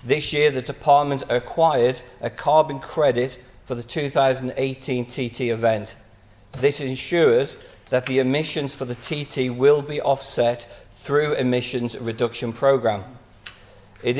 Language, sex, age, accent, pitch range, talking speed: English, male, 40-59, British, 120-145 Hz, 125 wpm